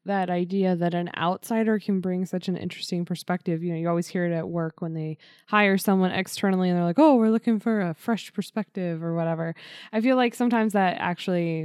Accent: American